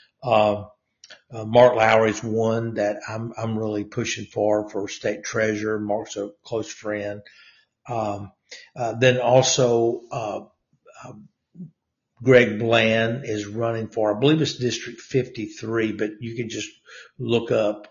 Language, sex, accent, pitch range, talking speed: English, male, American, 105-120 Hz, 140 wpm